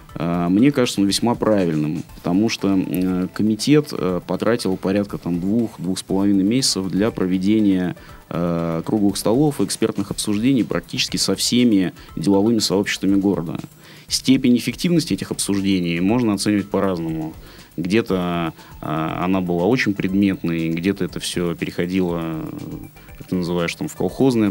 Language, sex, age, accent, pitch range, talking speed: Russian, male, 20-39, native, 90-110 Hz, 120 wpm